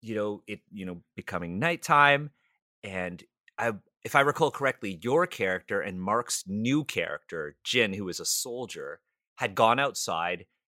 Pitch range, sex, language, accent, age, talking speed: 100-130 Hz, male, English, American, 30-49, 150 wpm